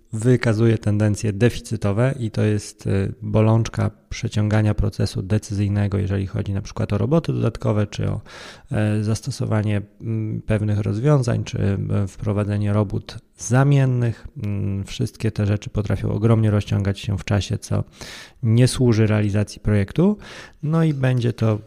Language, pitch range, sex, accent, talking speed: Polish, 100-115 Hz, male, native, 120 wpm